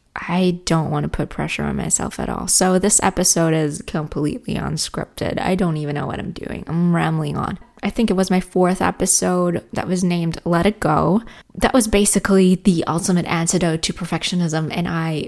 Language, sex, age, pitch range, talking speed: English, female, 20-39, 165-195 Hz, 190 wpm